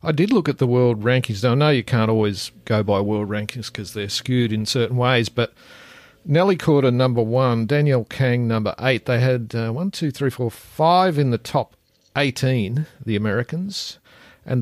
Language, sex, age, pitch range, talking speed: English, male, 50-69, 115-145 Hz, 195 wpm